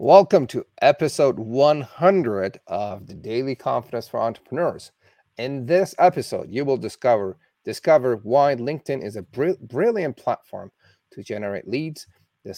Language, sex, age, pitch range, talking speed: English, male, 40-59, 120-155 Hz, 130 wpm